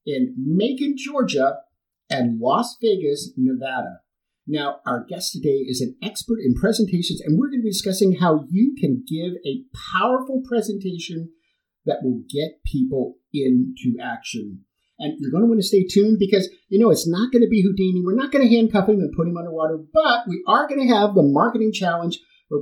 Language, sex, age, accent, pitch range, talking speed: English, male, 50-69, American, 155-230 Hz, 190 wpm